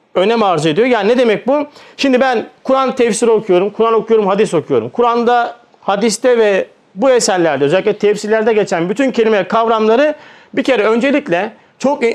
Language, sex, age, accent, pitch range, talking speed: Turkish, male, 40-59, native, 185-240 Hz, 155 wpm